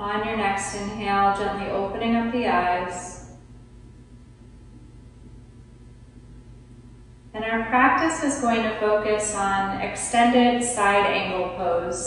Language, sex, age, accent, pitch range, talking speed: English, female, 30-49, American, 195-240 Hz, 105 wpm